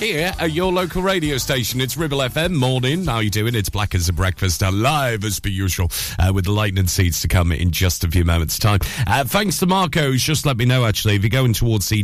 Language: English